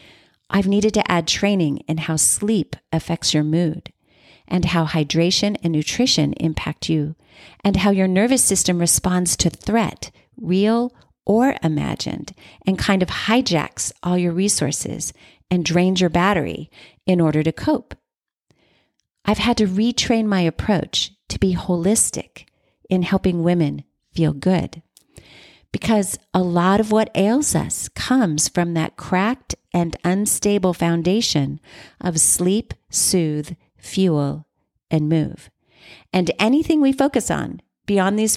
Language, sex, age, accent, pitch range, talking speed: English, female, 40-59, American, 165-215 Hz, 135 wpm